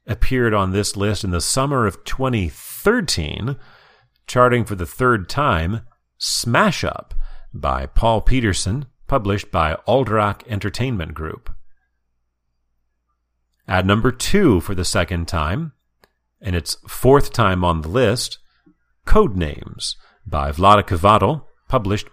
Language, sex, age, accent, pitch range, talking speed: English, male, 40-59, American, 85-125 Hz, 115 wpm